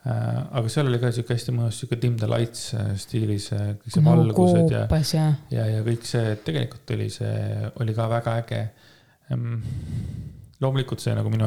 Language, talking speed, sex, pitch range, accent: English, 135 wpm, male, 110-125 Hz, Finnish